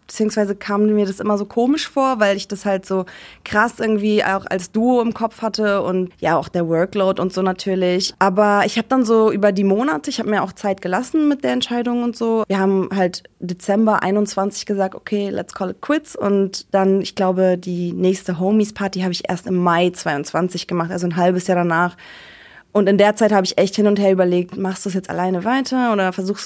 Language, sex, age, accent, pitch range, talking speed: German, female, 20-39, German, 185-210 Hz, 220 wpm